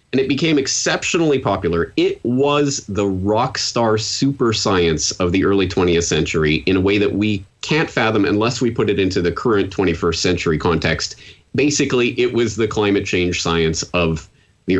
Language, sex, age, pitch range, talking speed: English, male, 30-49, 85-120 Hz, 175 wpm